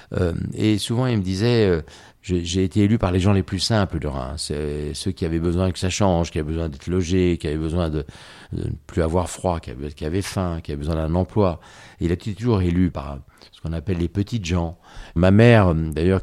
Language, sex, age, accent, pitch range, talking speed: French, male, 50-69, French, 80-95 Hz, 230 wpm